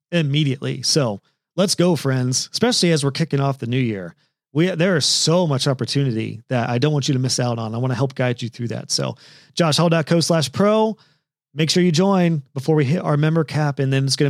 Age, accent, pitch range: 40-59, American, 135-175 Hz